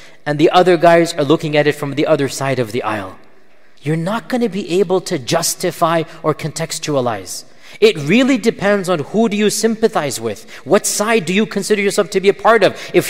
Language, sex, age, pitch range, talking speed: English, male, 40-59, 150-215 Hz, 210 wpm